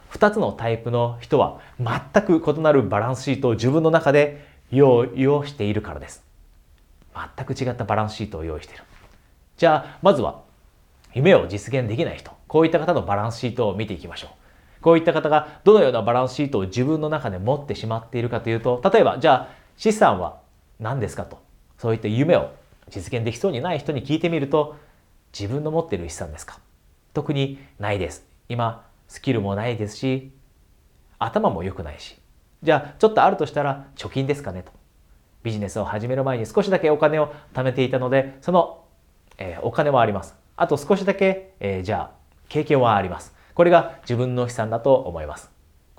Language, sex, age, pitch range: Japanese, male, 30-49, 100-145 Hz